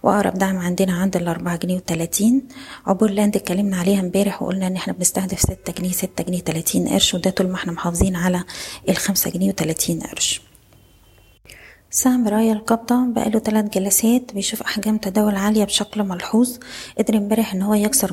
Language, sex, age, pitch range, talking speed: Arabic, female, 20-39, 180-205 Hz, 160 wpm